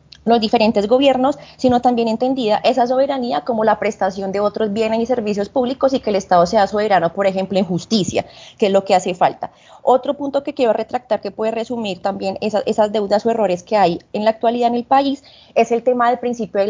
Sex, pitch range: female, 200-250 Hz